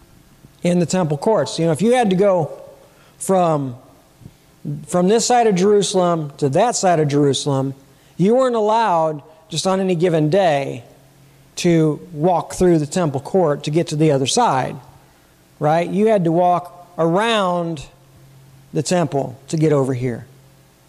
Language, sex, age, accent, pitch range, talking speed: English, male, 50-69, American, 155-205 Hz, 155 wpm